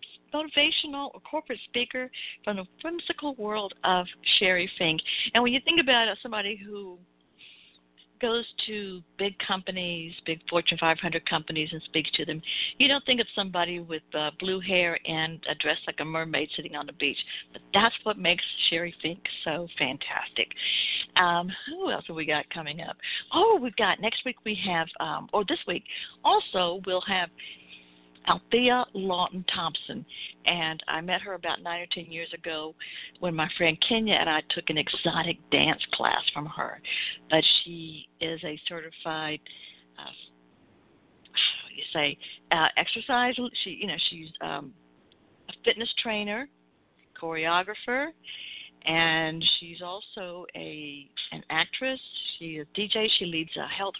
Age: 60-79